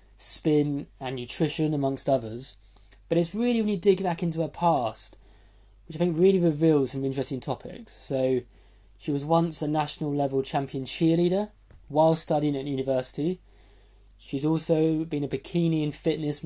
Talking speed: 155 wpm